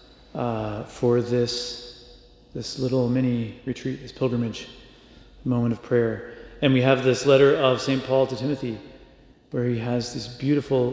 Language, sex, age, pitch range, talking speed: English, male, 30-49, 120-135 Hz, 150 wpm